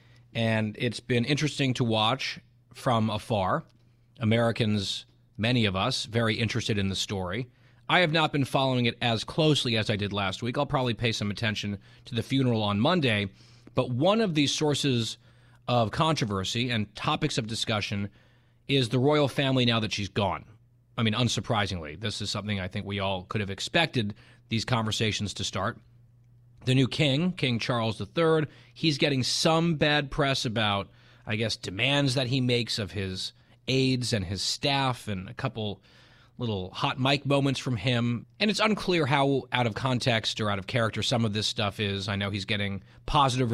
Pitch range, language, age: 105-130 Hz, English, 30-49